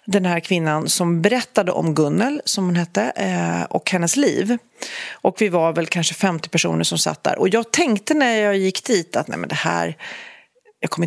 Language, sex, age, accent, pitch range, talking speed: Swedish, female, 30-49, native, 165-210 Hz, 200 wpm